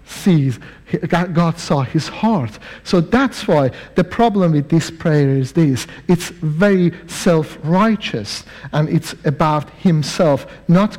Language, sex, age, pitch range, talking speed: English, male, 60-79, 150-225 Hz, 125 wpm